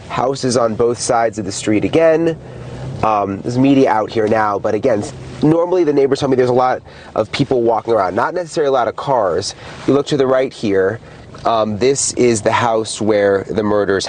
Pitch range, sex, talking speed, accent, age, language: 110-130 Hz, male, 205 wpm, American, 30-49, English